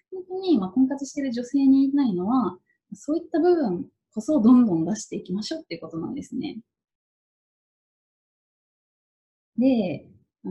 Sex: female